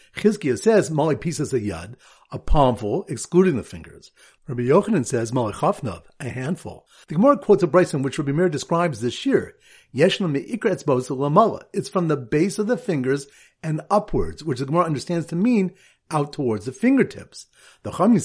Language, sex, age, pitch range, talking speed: English, male, 50-69, 135-195 Hz, 180 wpm